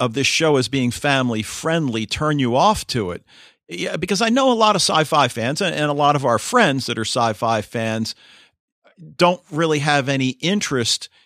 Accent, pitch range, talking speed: American, 115-155 Hz, 195 wpm